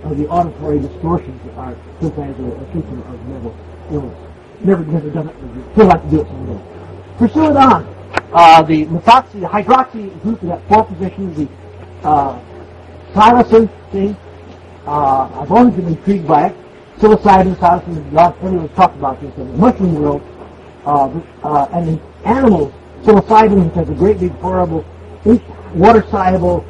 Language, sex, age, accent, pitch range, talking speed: English, male, 50-69, American, 135-200 Hz, 170 wpm